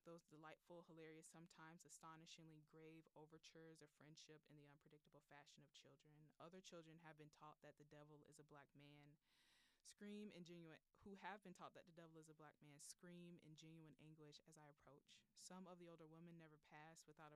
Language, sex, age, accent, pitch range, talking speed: English, female, 20-39, American, 150-170 Hz, 195 wpm